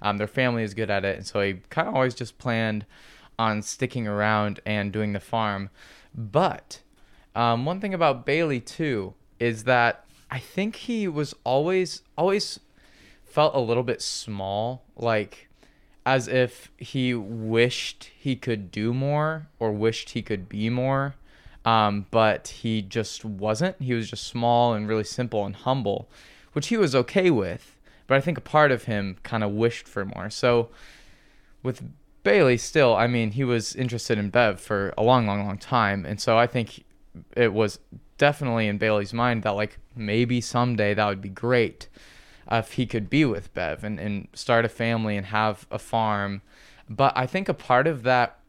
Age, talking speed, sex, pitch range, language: 20-39, 180 wpm, male, 105-125 Hz, English